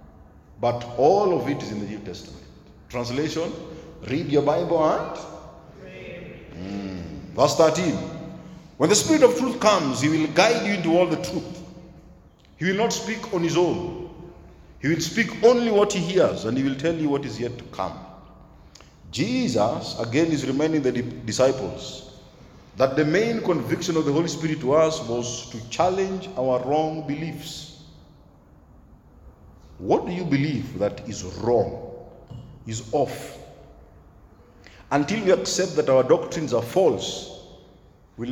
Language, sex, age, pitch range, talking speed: English, male, 50-69, 125-170 Hz, 150 wpm